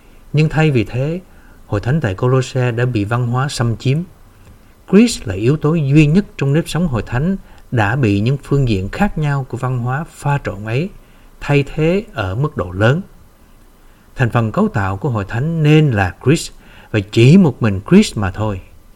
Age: 60-79